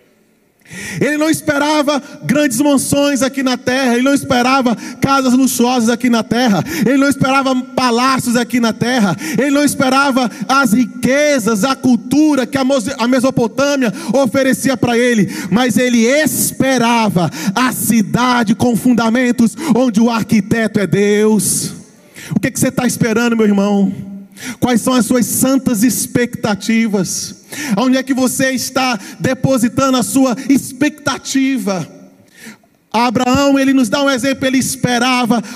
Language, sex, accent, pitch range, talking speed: Portuguese, male, Brazilian, 230-270 Hz, 135 wpm